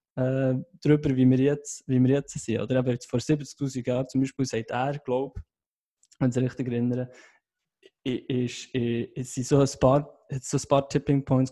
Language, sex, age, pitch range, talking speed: German, male, 20-39, 125-145 Hz, 140 wpm